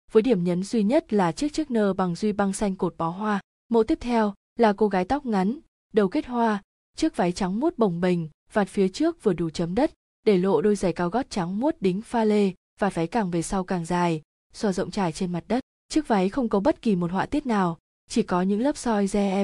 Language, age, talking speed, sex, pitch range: Vietnamese, 20-39, 250 wpm, female, 185-230 Hz